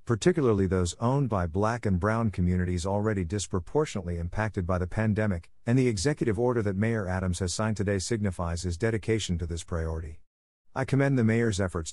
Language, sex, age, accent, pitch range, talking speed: English, male, 50-69, American, 85-110 Hz, 175 wpm